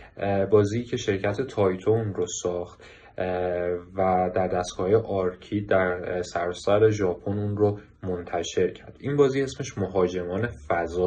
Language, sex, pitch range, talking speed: Persian, male, 90-110 Hz, 125 wpm